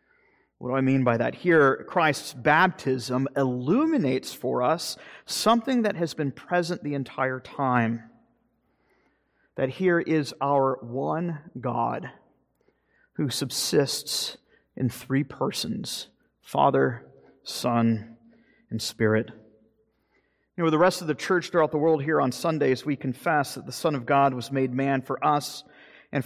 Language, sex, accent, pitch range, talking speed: English, male, American, 125-170 Hz, 140 wpm